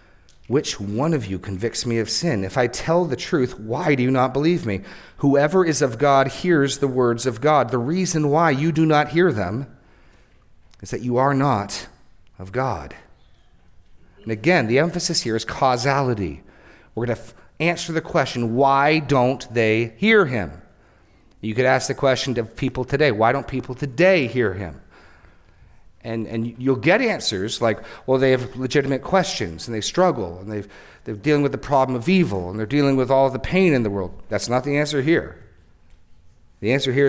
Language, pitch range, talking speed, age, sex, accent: English, 100-145 Hz, 190 wpm, 40-59, male, American